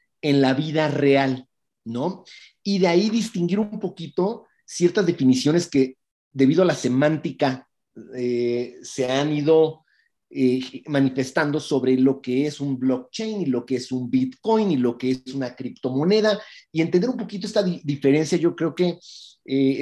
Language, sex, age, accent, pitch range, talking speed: Spanish, male, 40-59, Mexican, 130-175 Hz, 155 wpm